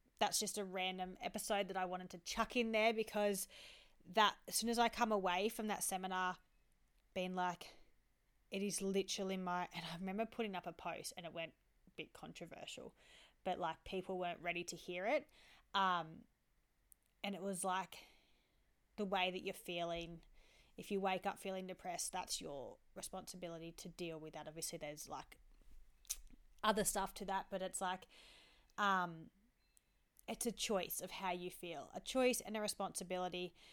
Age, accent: 20-39, Australian